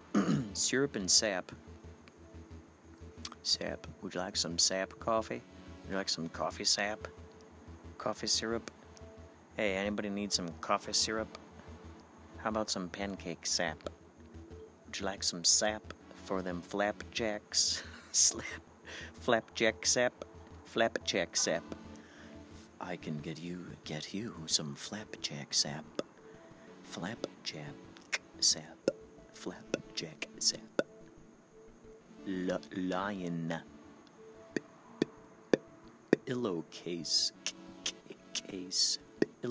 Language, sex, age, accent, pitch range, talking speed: English, male, 40-59, American, 85-105 Hz, 100 wpm